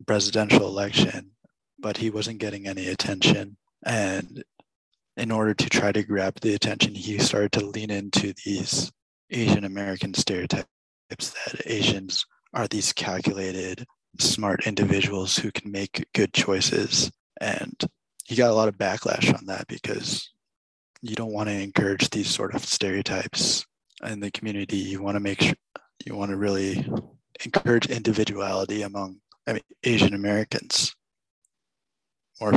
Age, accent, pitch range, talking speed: 20-39, American, 100-110 Hz, 140 wpm